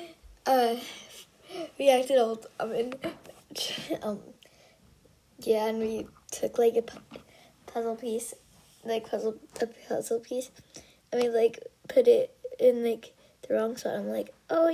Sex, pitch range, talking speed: female, 240-335 Hz, 140 wpm